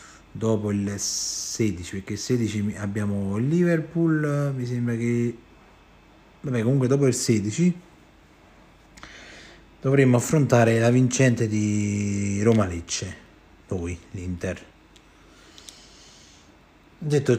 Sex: male